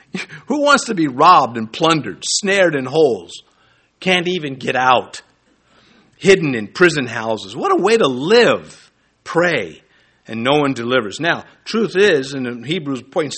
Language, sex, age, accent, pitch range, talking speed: English, male, 50-69, American, 125-190 Hz, 150 wpm